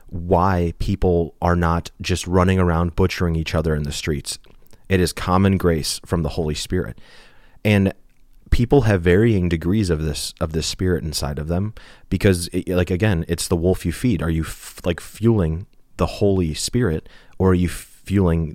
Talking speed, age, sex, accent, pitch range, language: 170 wpm, 30-49, male, American, 80-95 Hz, English